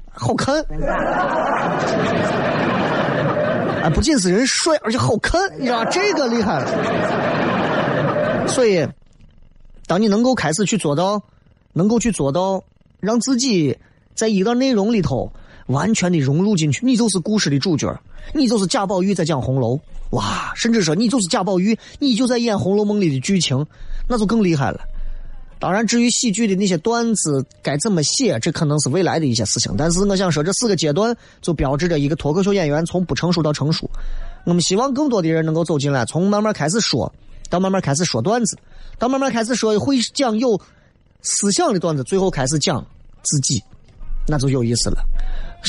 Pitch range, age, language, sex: 140-215 Hz, 30-49, Chinese, male